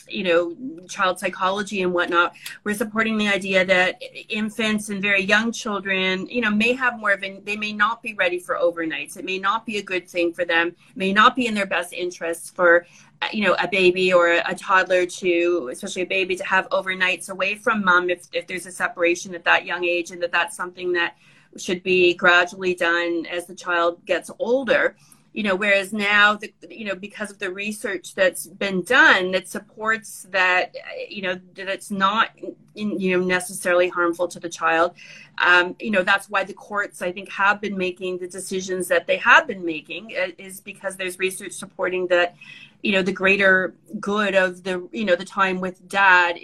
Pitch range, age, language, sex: 180-200 Hz, 30-49, English, female